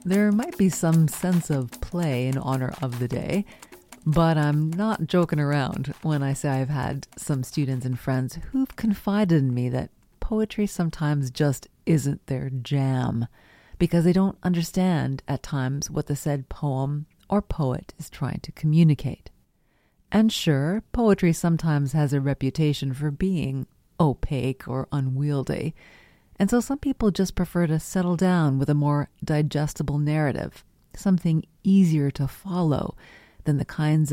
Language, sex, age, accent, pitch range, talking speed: English, female, 40-59, American, 135-175 Hz, 150 wpm